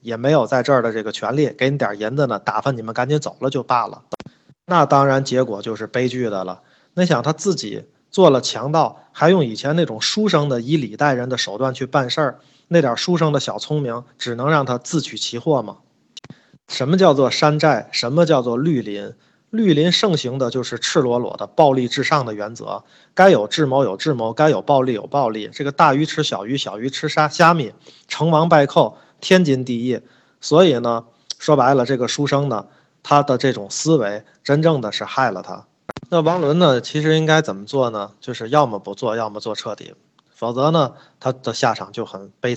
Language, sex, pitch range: Chinese, male, 115-150 Hz